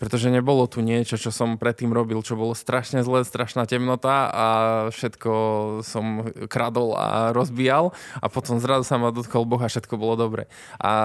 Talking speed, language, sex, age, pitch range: 175 wpm, Slovak, male, 20-39, 110-125 Hz